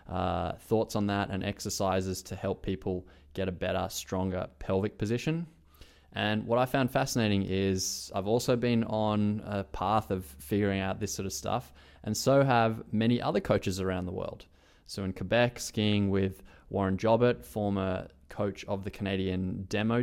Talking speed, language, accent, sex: 170 wpm, English, Australian, male